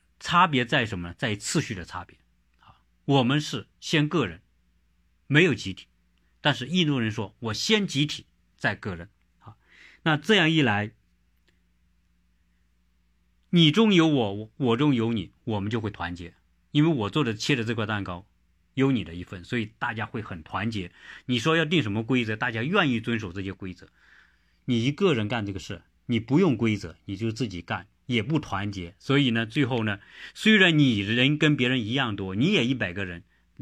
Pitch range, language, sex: 95-145 Hz, Chinese, male